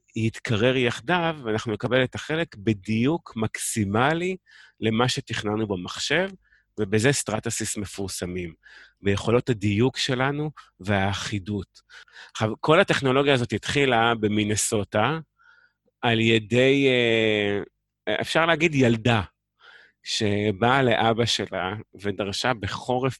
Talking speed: 90 wpm